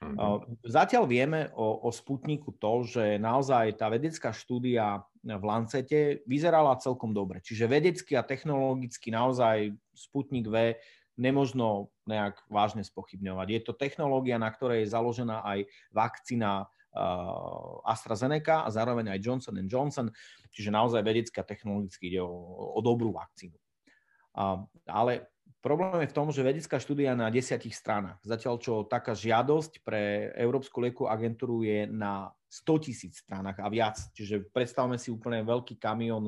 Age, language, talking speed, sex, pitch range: 30-49, Slovak, 140 wpm, male, 110-130 Hz